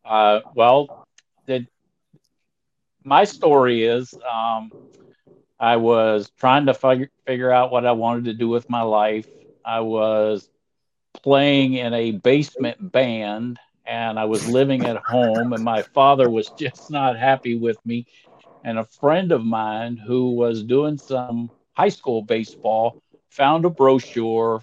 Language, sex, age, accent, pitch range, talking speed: English, male, 50-69, American, 115-130 Hz, 140 wpm